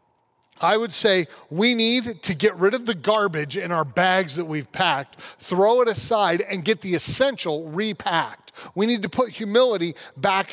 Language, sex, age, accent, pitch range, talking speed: English, male, 40-59, American, 175-225 Hz, 175 wpm